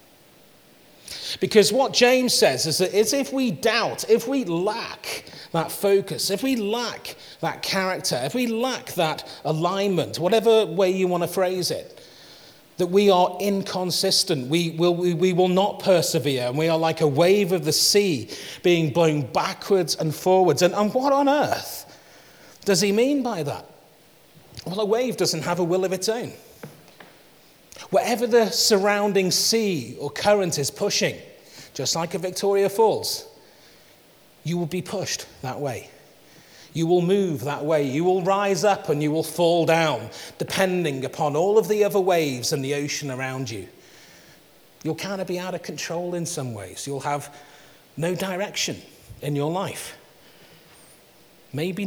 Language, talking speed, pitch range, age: English, 160 wpm, 160-205 Hz, 40-59